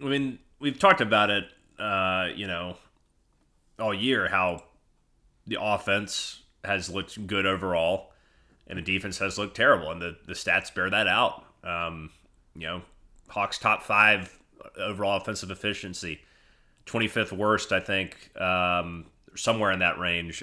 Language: English